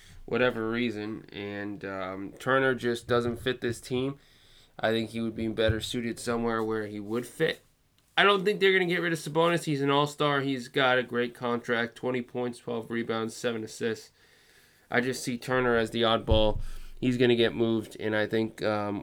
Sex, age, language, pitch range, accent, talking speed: male, 20-39, English, 110-140 Hz, American, 195 wpm